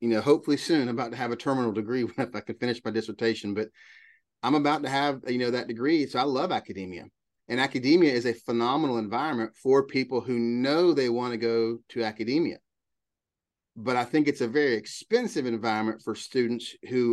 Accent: American